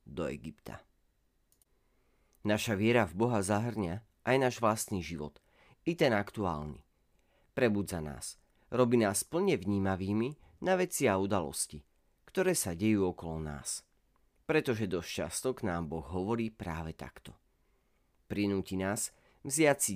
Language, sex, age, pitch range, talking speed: Slovak, male, 40-59, 85-120 Hz, 125 wpm